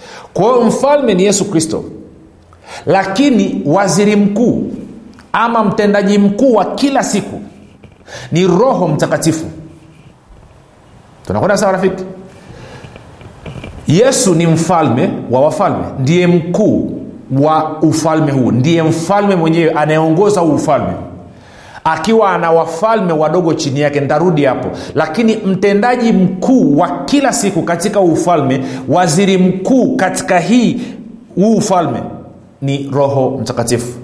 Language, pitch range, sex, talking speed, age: Swahili, 135-200 Hz, male, 105 wpm, 50-69